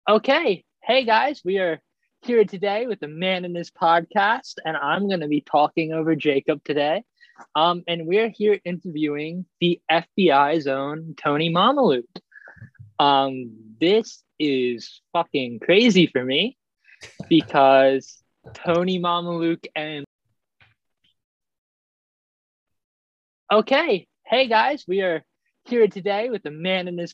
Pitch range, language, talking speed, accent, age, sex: 140-190 Hz, English, 120 wpm, American, 20-39, male